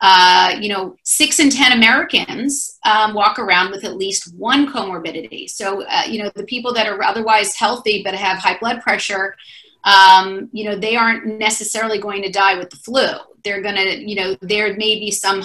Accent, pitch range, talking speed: American, 185-220 Hz, 200 wpm